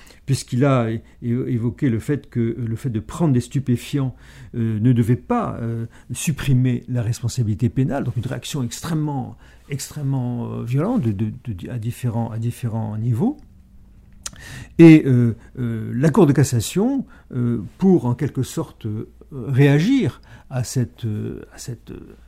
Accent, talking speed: French, 130 wpm